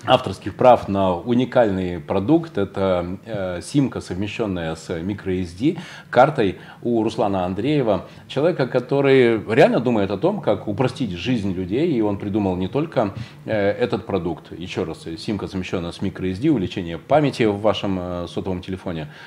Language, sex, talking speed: Russian, male, 135 wpm